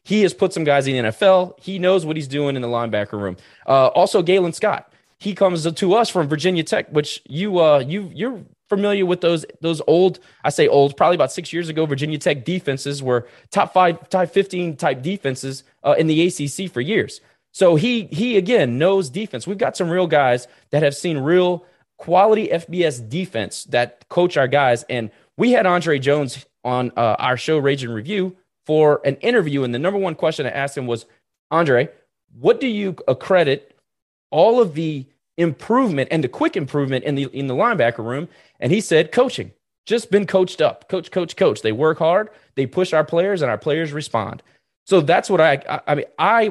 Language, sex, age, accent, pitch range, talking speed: English, male, 20-39, American, 140-185 Hz, 205 wpm